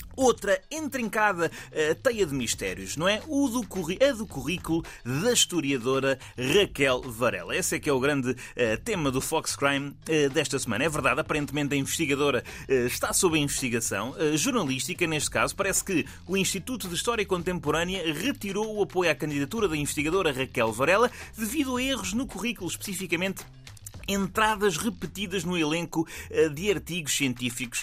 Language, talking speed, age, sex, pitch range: Portuguese, 145 wpm, 30-49, male, 145-205 Hz